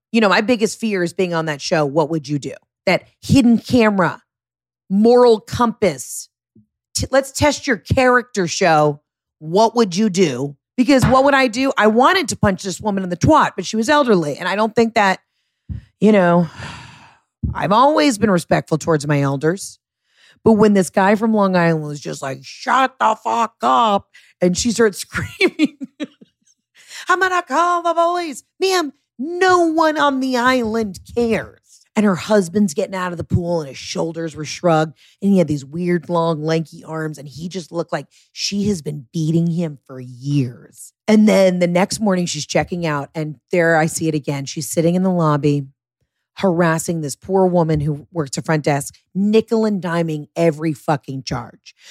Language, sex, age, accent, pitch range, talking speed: English, female, 40-59, American, 160-230 Hz, 185 wpm